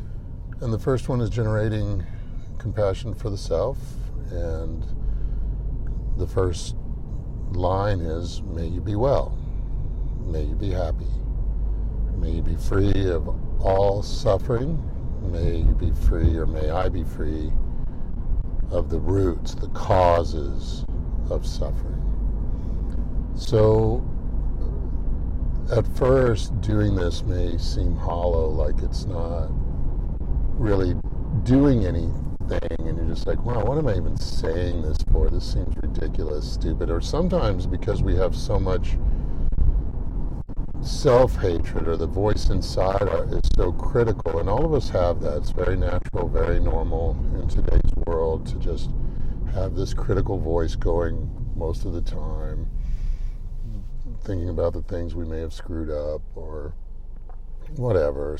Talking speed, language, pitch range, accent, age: 130 wpm, English, 80-100 Hz, American, 50-69